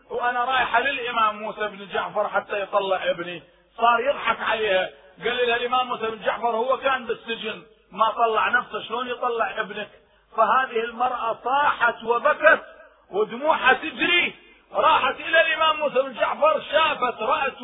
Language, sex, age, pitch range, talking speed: Arabic, male, 30-49, 220-285 Hz, 140 wpm